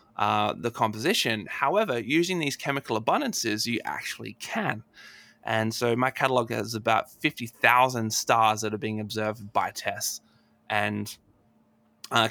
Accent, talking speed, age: Australian, 135 wpm, 20-39